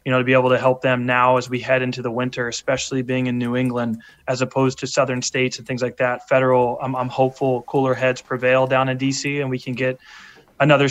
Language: English